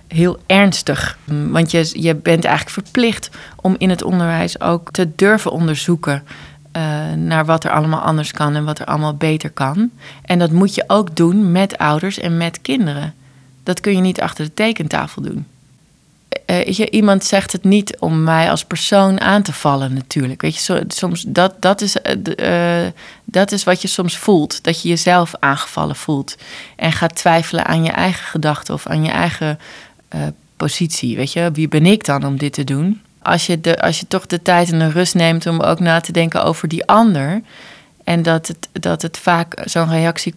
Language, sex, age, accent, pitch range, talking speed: Dutch, female, 20-39, Dutch, 155-185 Hz, 195 wpm